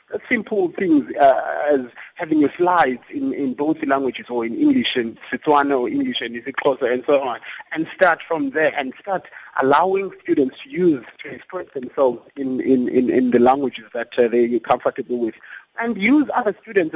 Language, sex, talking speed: English, male, 190 wpm